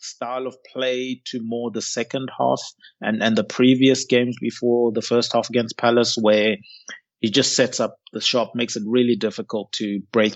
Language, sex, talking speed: English, male, 185 wpm